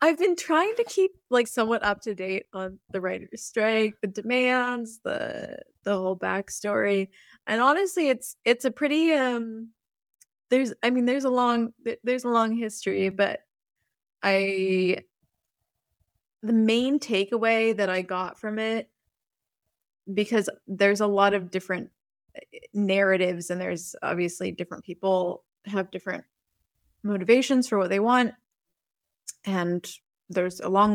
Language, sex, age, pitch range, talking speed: English, female, 20-39, 190-240 Hz, 135 wpm